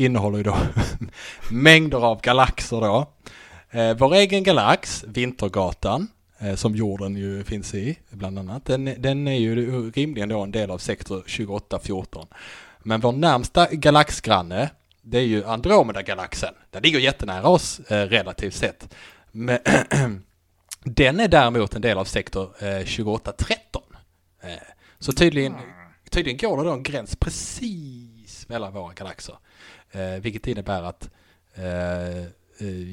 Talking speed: 120 wpm